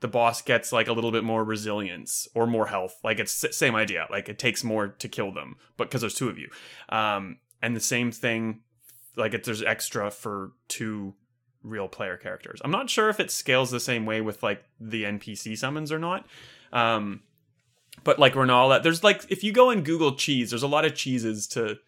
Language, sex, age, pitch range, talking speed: English, male, 20-39, 110-125 Hz, 210 wpm